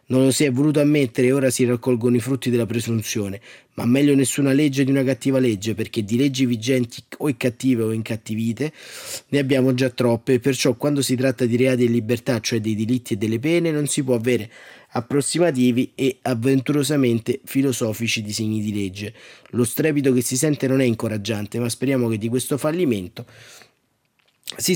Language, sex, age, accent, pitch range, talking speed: Italian, male, 30-49, native, 115-135 Hz, 185 wpm